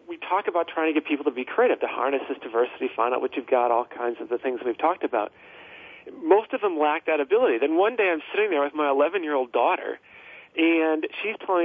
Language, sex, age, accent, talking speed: English, male, 40-59, American, 245 wpm